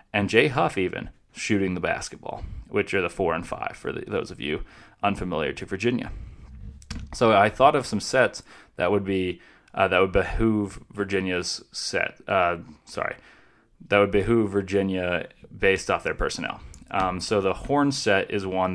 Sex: male